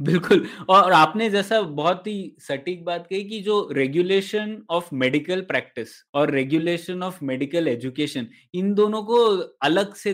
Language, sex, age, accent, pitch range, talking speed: Hindi, male, 20-39, native, 145-195 Hz, 150 wpm